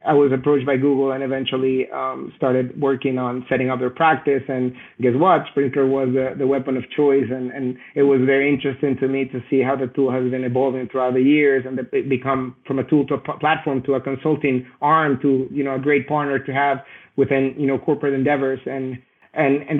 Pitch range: 135-145 Hz